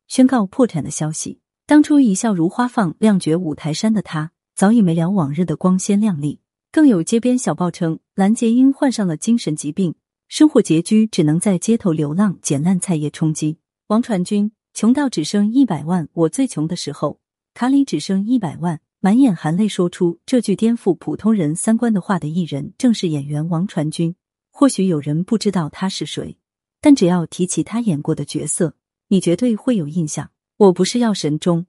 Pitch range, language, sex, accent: 160-225 Hz, Chinese, female, native